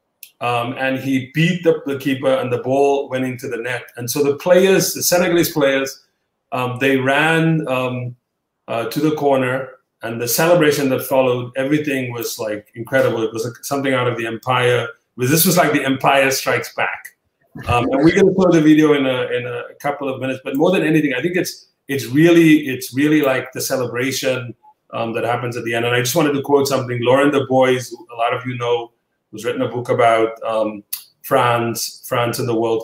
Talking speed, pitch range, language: 210 wpm, 115-140 Hz, English